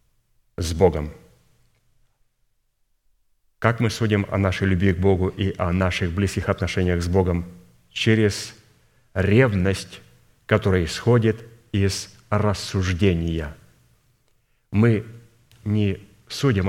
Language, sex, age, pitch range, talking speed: Russian, male, 30-49, 90-115 Hz, 95 wpm